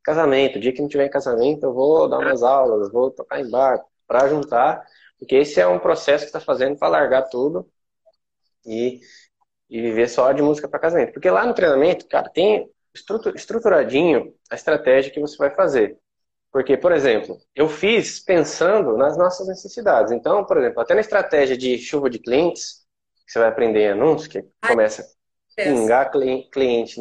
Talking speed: 180 wpm